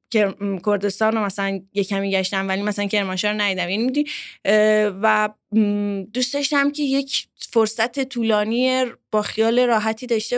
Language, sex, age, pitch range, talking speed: Persian, female, 20-39, 195-230 Hz, 125 wpm